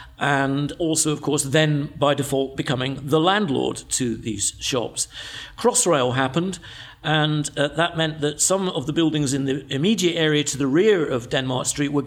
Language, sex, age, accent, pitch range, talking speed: English, male, 50-69, British, 135-170 Hz, 175 wpm